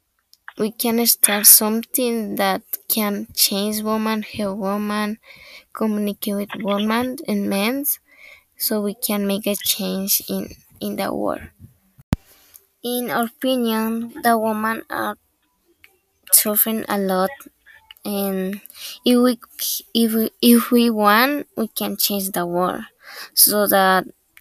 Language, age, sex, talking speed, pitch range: English, 10-29, female, 115 wpm, 200-230 Hz